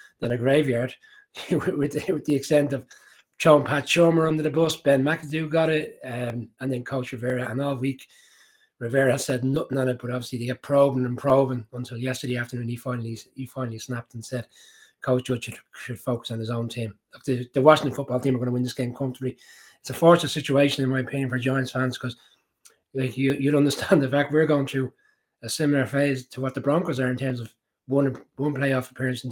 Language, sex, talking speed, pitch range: English, male, 220 wpm, 120-140 Hz